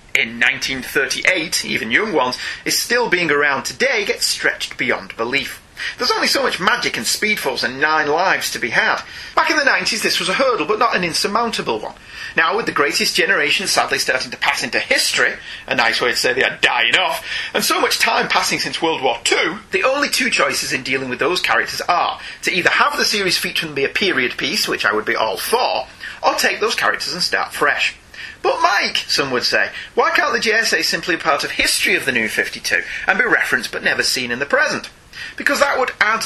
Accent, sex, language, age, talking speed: British, male, English, 30-49, 220 wpm